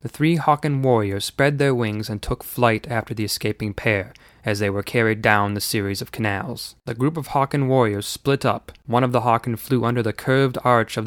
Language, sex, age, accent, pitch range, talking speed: English, male, 20-39, American, 105-120 Hz, 215 wpm